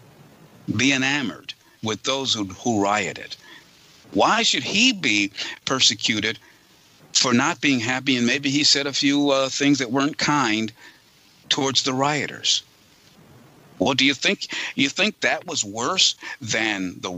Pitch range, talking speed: 125-150 Hz, 145 wpm